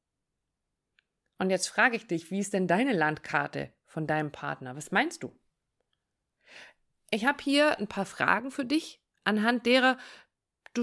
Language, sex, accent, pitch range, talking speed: German, female, German, 170-240 Hz, 150 wpm